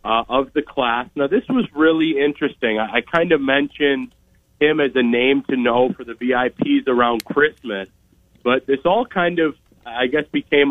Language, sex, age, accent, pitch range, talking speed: English, male, 30-49, American, 120-140 Hz, 180 wpm